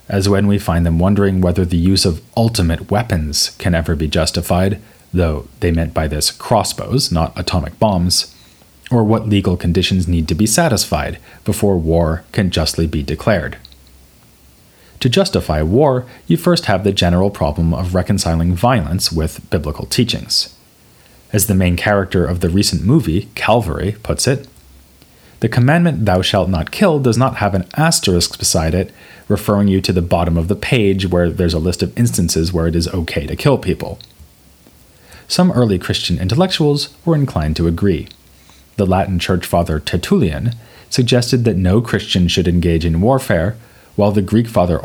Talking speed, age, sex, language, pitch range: 165 wpm, 30-49, male, English, 85-105 Hz